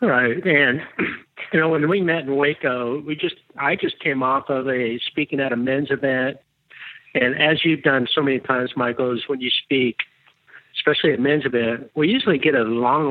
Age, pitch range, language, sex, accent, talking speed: 60-79, 130-150 Hz, English, male, American, 195 wpm